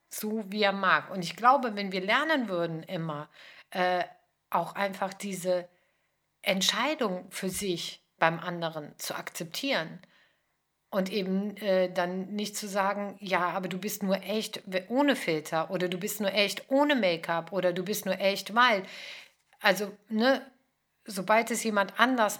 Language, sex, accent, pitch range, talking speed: German, female, German, 185-235 Hz, 155 wpm